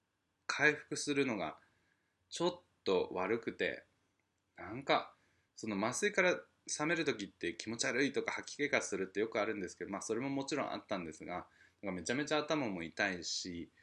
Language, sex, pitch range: Japanese, male, 95-145 Hz